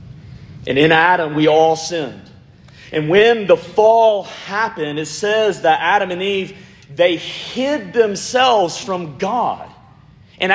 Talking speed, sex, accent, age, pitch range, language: 130 wpm, male, American, 30-49, 135-175 Hz, English